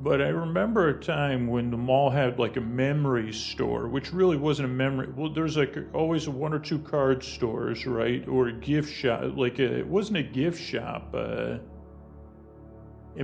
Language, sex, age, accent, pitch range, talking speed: English, male, 40-59, American, 115-140 Hz, 180 wpm